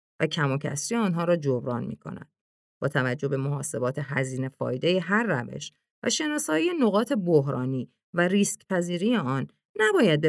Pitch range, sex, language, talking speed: 140-210 Hz, female, Persian, 145 wpm